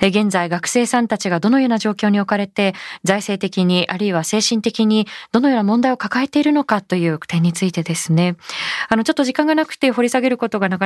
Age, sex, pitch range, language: 20-39, female, 180-270 Hz, Japanese